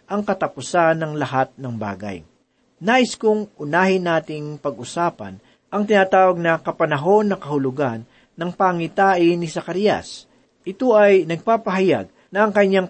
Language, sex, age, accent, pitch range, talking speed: Filipino, male, 40-59, native, 140-195 Hz, 125 wpm